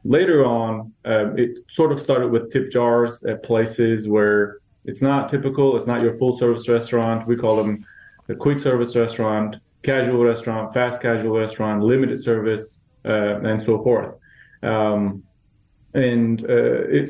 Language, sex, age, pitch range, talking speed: English, male, 20-39, 105-120 Hz, 155 wpm